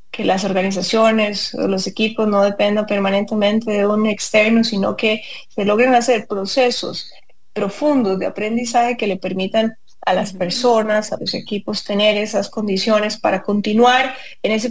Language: English